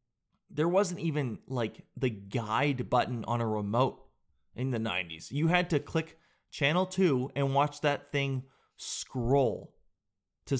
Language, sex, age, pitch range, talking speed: English, male, 30-49, 115-150 Hz, 140 wpm